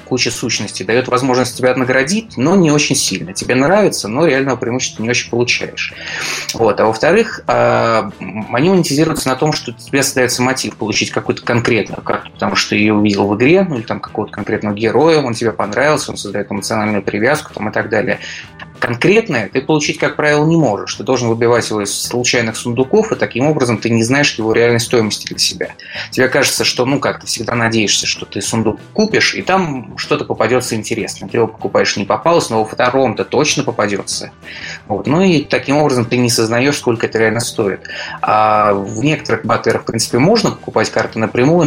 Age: 20-39